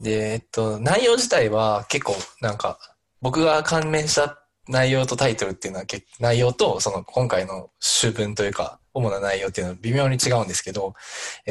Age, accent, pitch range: 20-39, native, 105-130 Hz